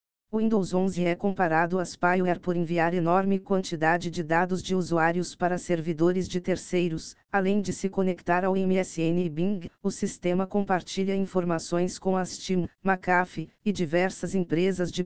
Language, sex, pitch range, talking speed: Portuguese, female, 170-190 Hz, 150 wpm